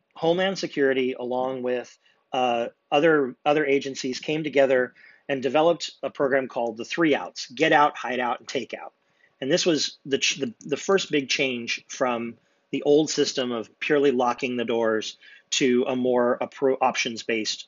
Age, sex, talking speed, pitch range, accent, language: 30-49, male, 170 wpm, 125-145 Hz, American, English